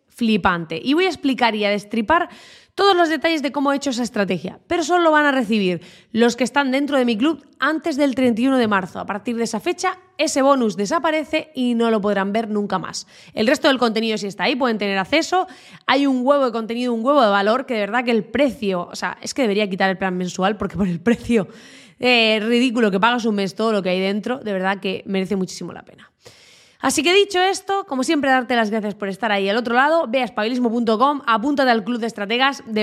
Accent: Spanish